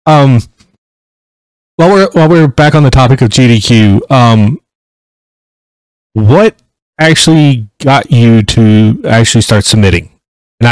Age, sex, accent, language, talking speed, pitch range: 30-49, male, American, English, 120 wpm, 105-125 Hz